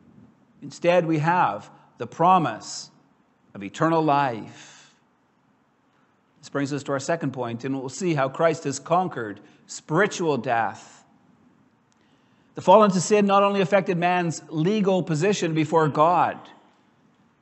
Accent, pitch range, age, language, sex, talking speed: American, 155-205 Hz, 50-69, English, male, 125 wpm